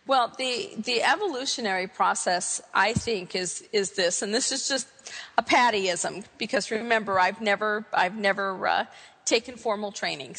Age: 50-69